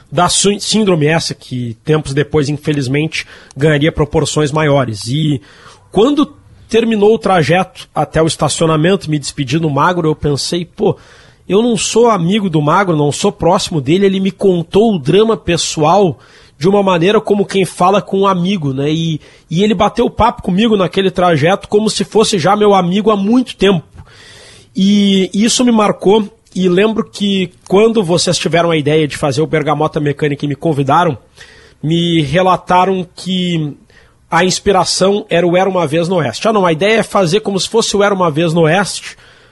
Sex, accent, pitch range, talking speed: male, Brazilian, 155-200 Hz, 175 wpm